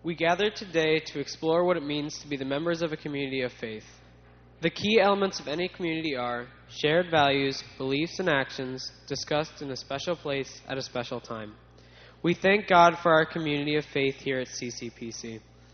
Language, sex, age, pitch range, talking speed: English, male, 10-29, 125-160 Hz, 185 wpm